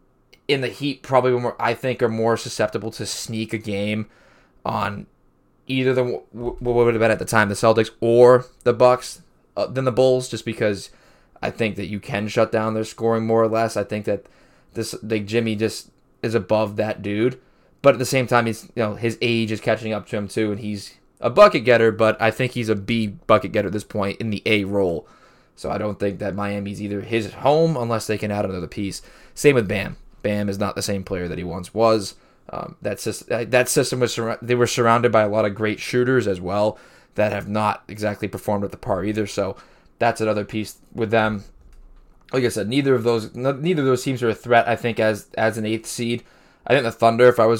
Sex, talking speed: male, 235 wpm